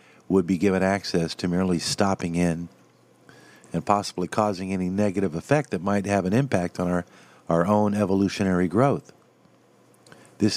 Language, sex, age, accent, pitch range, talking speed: English, male, 50-69, American, 90-110 Hz, 150 wpm